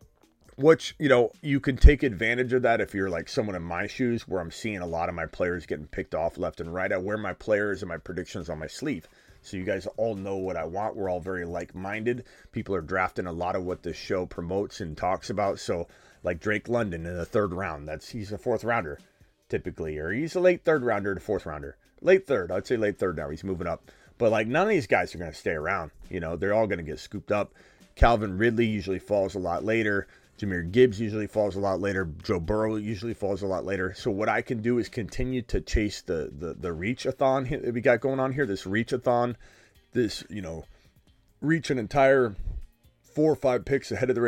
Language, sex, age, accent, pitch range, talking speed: English, male, 30-49, American, 90-125 Hz, 230 wpm